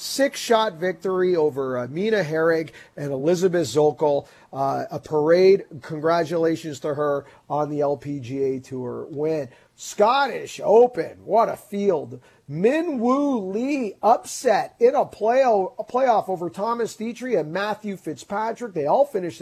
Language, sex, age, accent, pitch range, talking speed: English, male, 40-59, American, 150-235 Hz, 125 wpm